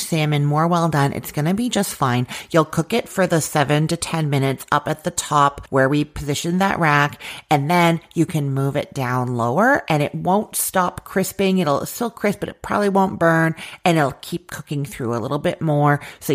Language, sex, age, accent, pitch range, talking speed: English, female, 40-59, American, 140-180 Hz, 215 wpm